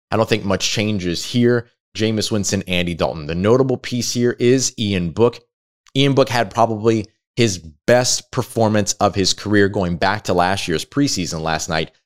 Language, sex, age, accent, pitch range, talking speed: English, male, 20-39, American, 90-110 Hz, 175 wpm